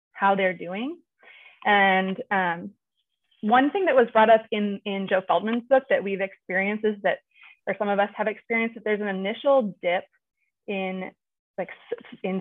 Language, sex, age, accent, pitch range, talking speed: English, female, 20-39, American, 195-255 Hz, 170 wpm